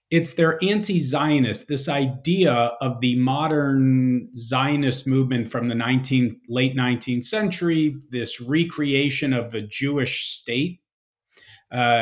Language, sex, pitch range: English, male, 120-150 Hz